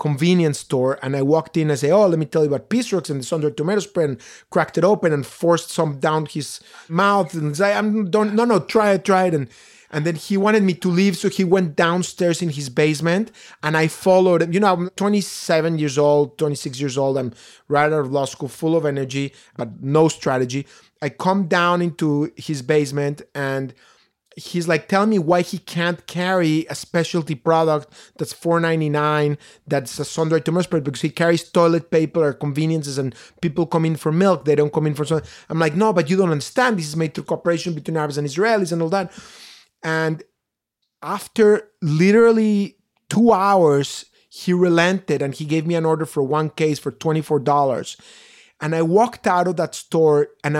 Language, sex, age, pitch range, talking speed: English, male, 30-49, 150-185 Hz, 205 wpm